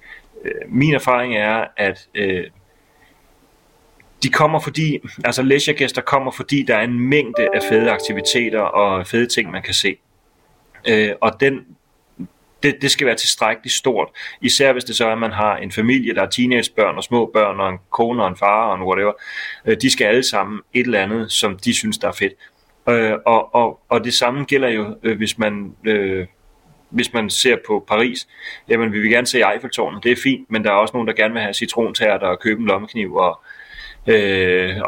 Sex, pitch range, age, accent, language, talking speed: male, 105-135 Hz, 30-49, native, Danish, 195 wpm